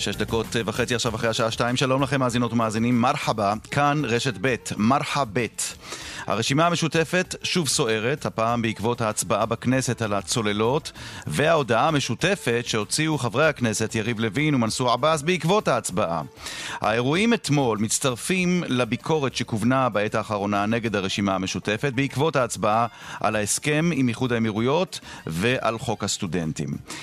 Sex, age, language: male, 40-59, Hebrew